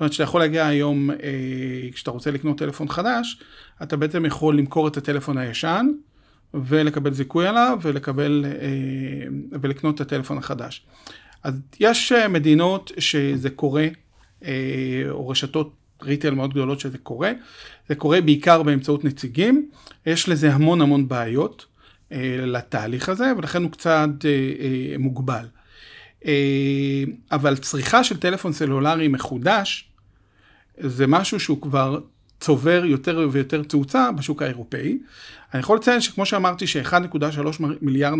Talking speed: 120 wpm